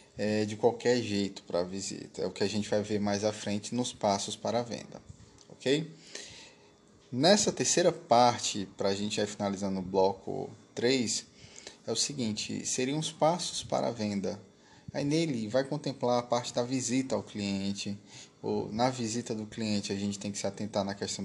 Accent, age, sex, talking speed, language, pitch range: Brazilian, 10-29, male, 185 wpm, Portuguese, 100-125 Hz